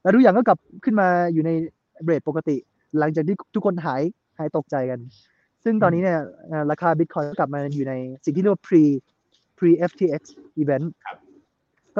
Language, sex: Thai, male